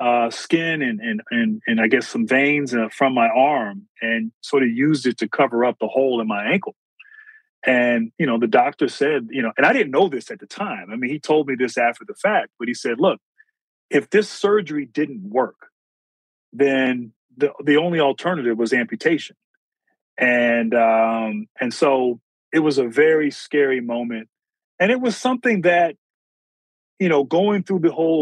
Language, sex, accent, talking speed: English, male, American, 190 wpm